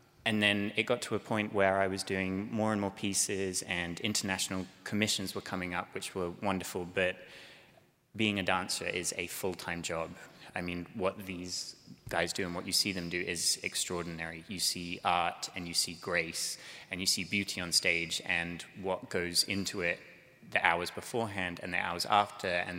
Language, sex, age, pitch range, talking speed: English, male, 20-39, 90-100 Hz, 190 wpm